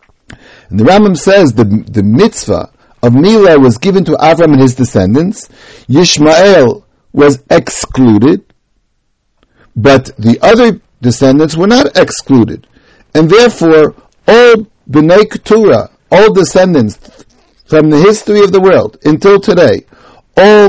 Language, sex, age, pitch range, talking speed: English, male, 60-79, 130-170 Hz, 120 wpm